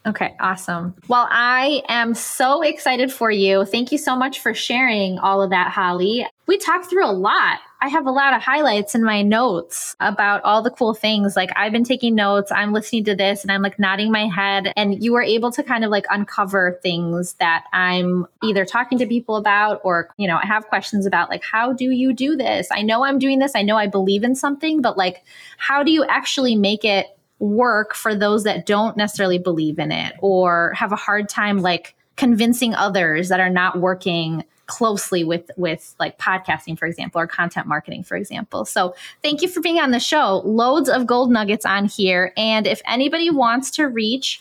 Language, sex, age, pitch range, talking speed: English, female, 20-39, 195-250 Hz, 210 wpm